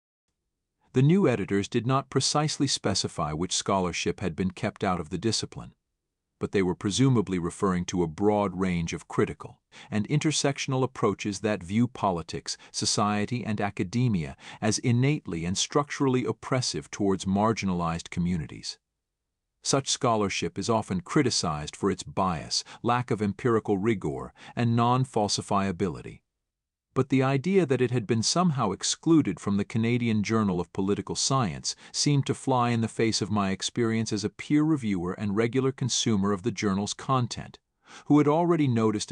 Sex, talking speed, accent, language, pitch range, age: male, 150 wpm, American, English, 100-130 Hz, 50-69